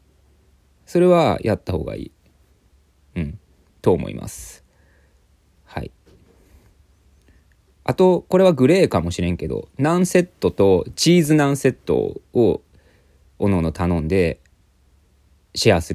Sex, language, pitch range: male, Japanese, 80-110 Hz